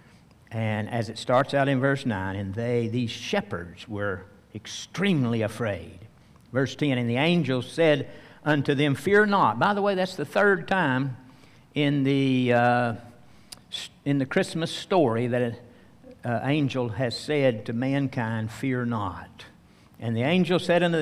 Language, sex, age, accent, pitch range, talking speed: English, male, 60-79, American, 120-185 Hz, 145 wpm